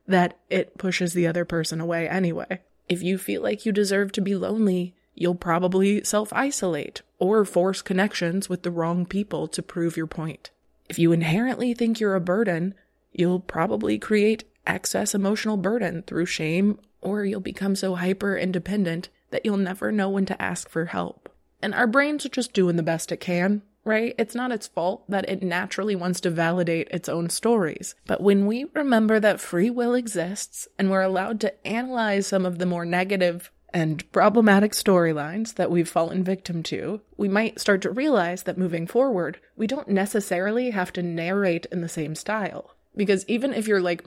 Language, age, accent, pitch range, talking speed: English, 20-39, American, 175-210 Hz, 180 wpm